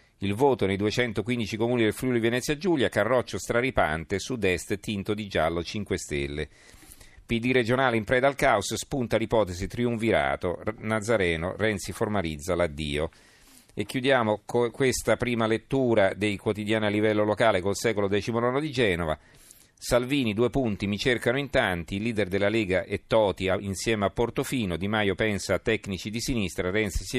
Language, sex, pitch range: Italian, male, 95-120 Hz